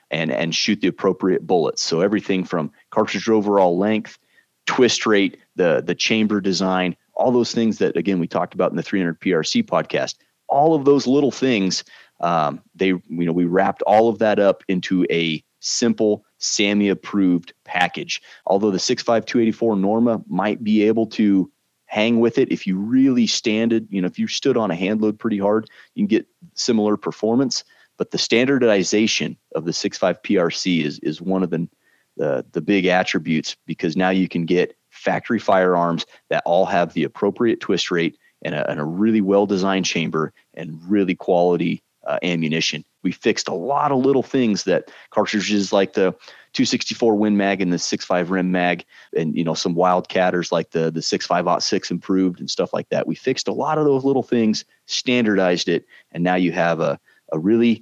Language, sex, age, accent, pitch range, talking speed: English, male, 30-49, American, 90-115 Hz, 180 wpm